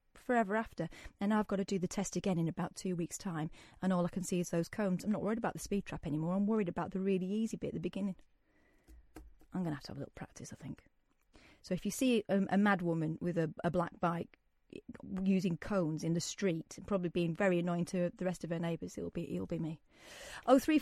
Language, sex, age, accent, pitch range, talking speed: English, female, 30-49, British, 170-210 Hz, 250 wpm